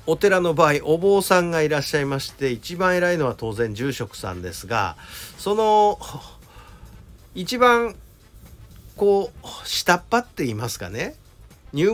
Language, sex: Japanese, male